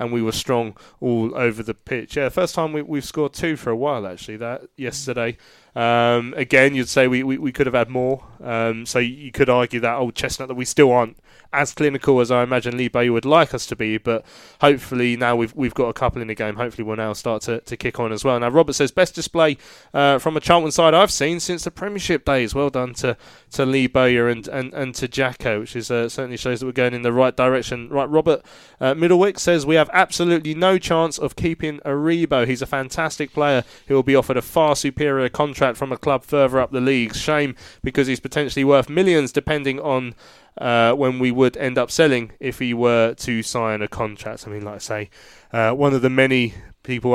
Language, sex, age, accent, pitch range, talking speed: English, male, 20-39, British, 120-140 Hz, 230 wpm